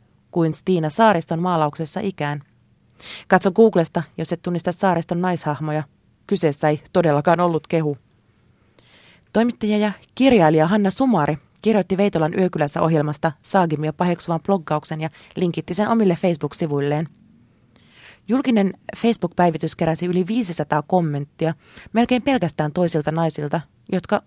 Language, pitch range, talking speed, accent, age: Finnish, 150-195 Hz, 110 wpm, native, 30-49